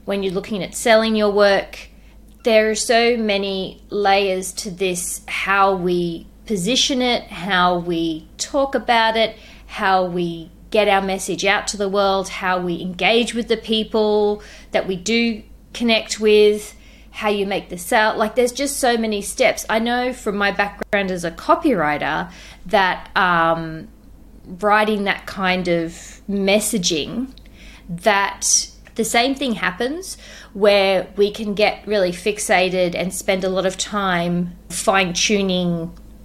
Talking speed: 145 wpm